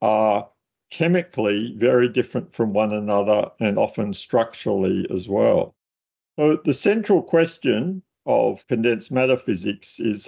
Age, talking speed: 50-69, 125 wpm